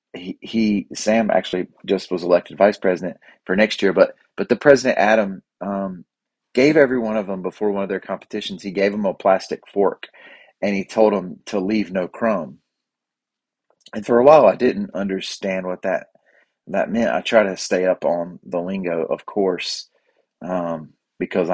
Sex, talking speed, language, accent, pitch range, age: male, 180 wpm, English, American, 90-110 Hz, 30-49